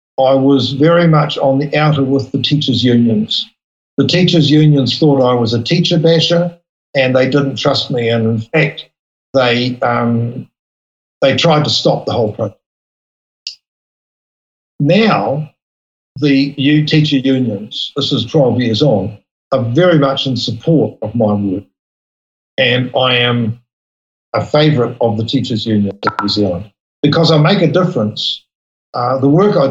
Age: 50-69